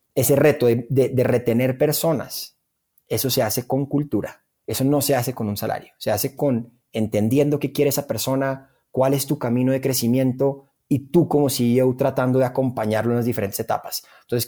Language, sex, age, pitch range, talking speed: Spanish, male, 30-49, 120-165 Hz, 185 wpm